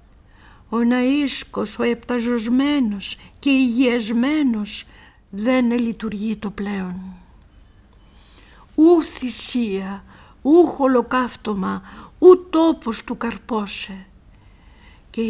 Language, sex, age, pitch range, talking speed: Greek, female, 50-69, 215-300 Hz, 75 wpm